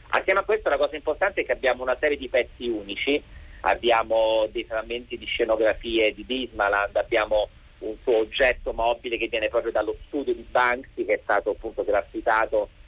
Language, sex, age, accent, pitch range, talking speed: Italian, male, 40-59, native, 115-140 Hz, 175 wpm